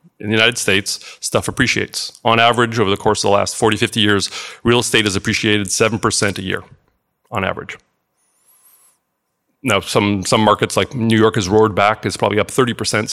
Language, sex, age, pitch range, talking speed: English, male, 40-59, 105-125 Hz, 185 wpm